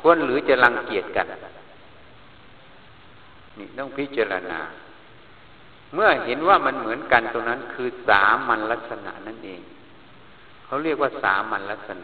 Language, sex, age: Thai, male, 60-79